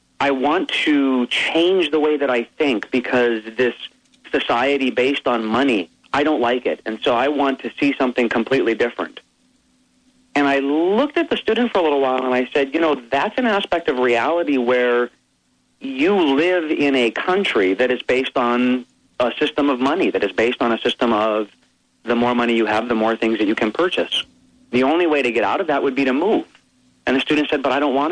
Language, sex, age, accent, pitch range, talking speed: English, male, 40-59, American, 120-155 Hz, 215 wpm